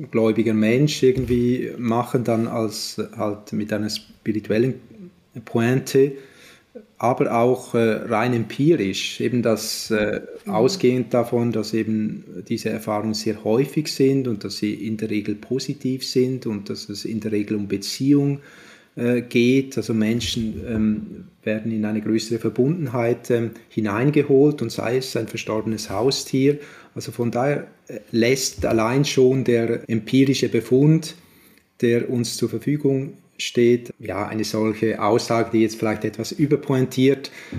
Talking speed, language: 135 wpm, German